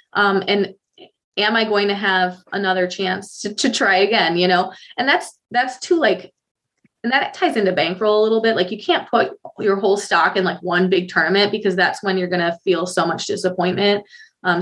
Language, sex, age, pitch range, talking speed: English, female, 20-39, 180-215 Hz, 210 wpm